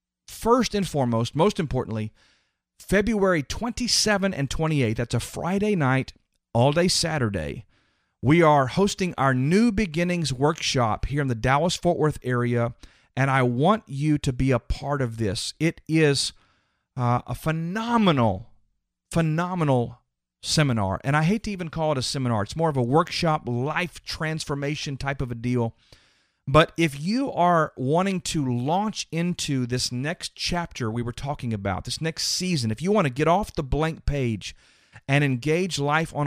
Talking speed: 160 wpm